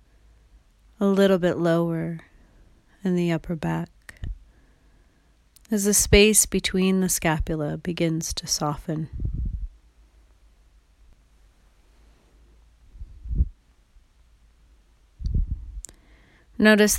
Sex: female